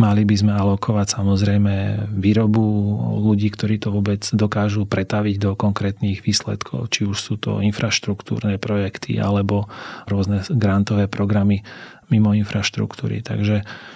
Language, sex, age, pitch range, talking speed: Slovak, male, 30-49, 100-110 Hz, 120 wpm